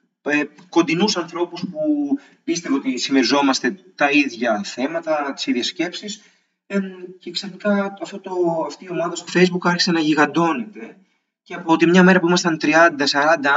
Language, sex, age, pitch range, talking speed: Greek, male, 30-49, 155-200 Hz, 135 wpm